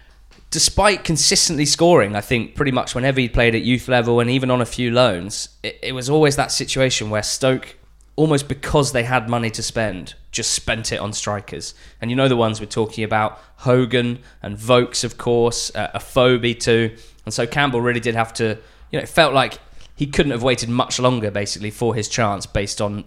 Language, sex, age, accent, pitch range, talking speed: English, male, 20-39, British, 110-140 Hz, 210 wpm